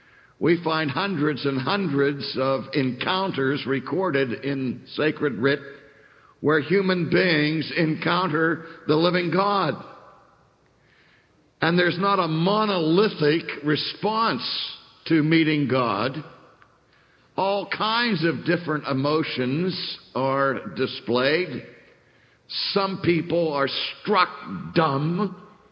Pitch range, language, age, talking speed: 145-180 Hz, English, 60-79, 90 wpm